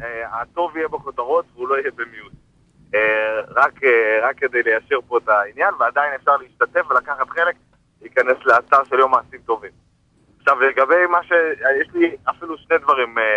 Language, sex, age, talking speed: Hebrew, male, 30-49, 150 wpm